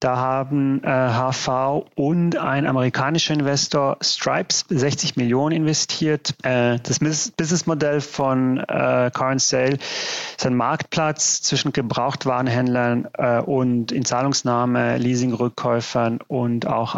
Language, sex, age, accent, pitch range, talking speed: German, male, 30-49, German, 120-145 Hz, 110 wpm